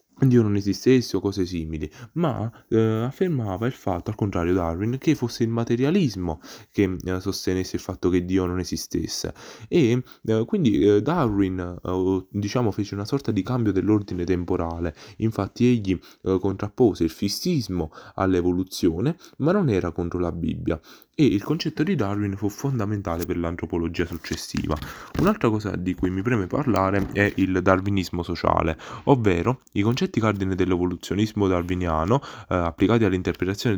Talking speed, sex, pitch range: 150 wpm, male, 90-110 Hz